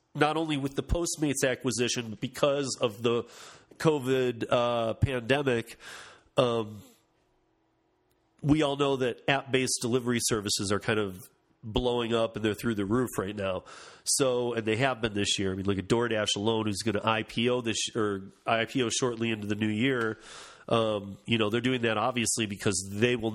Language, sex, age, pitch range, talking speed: English, male, 30-49, 110-140 Hz, 190 wpm